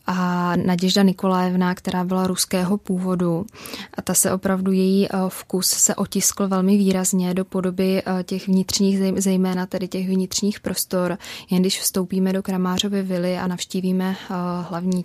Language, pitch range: Czech, 175-190 Hz